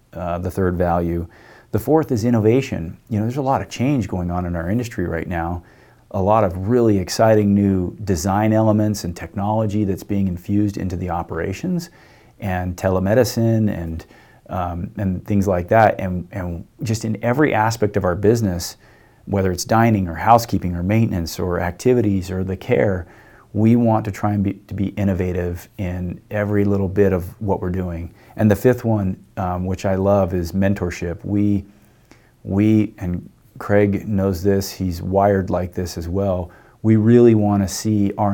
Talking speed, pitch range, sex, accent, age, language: 175 wpm, 95-110 Hz, male, American, 40-59, English